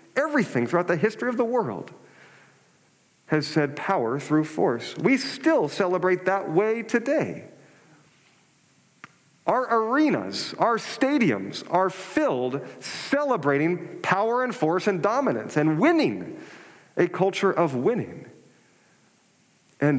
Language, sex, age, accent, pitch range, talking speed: English, male, 40-59, American, 140-205 Hz, 110 wpm